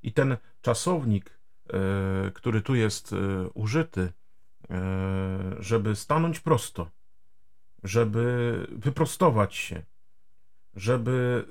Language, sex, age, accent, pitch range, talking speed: Polish, male, 40-59, native, 95-150 Hz, 75 wpm